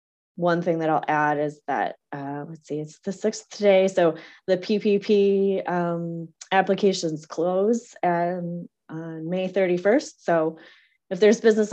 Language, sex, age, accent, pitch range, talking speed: English, female, 20-39, American, 155-185 Hz, 145 wpm